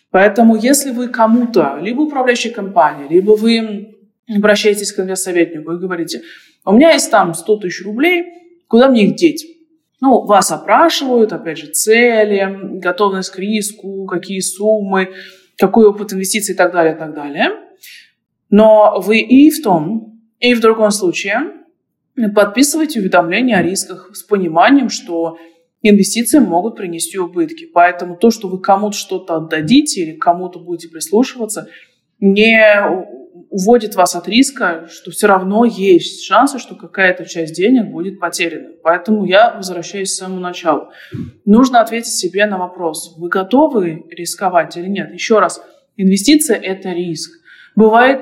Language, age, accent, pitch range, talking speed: Russian, 20-39, native, 180-235 Hz, 140 wpm